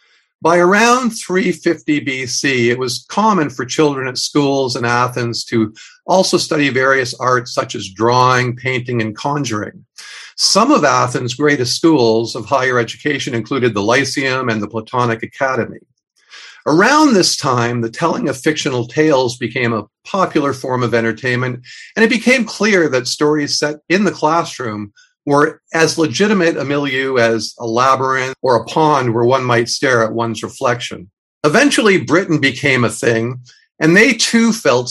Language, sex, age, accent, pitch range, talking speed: English, male, 50-69, American, 120-155 Hz, 155 wpm